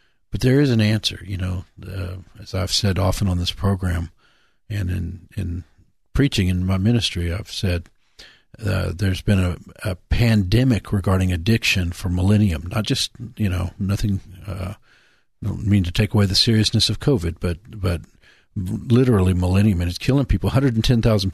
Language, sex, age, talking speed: English, male, 50-69, 165 wpm